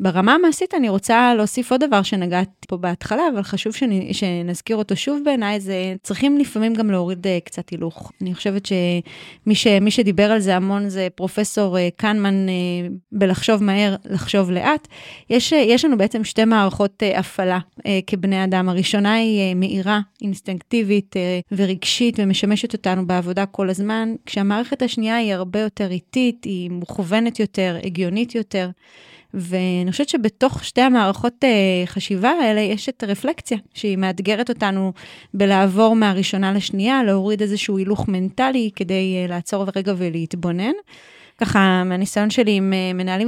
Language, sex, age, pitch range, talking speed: Hebrew, female, 30-49, 185-220 Hz, 145 wpm